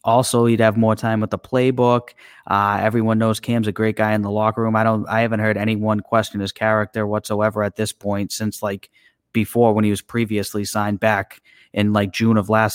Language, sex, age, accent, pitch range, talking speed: English, male, 30-49, American, 105-115 Hz, 215 wpm